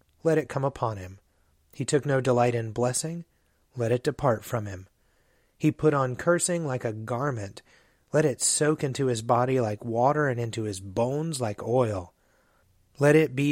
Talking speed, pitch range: 180 wpm, 105-130 Hz